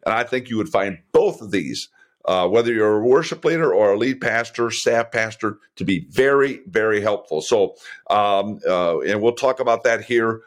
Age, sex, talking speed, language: 50-69, male, 200 wpm, English